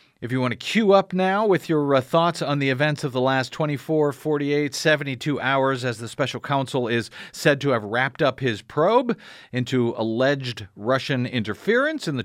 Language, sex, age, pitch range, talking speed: English, male, 40-59, 115-155 Hz, 190 wpm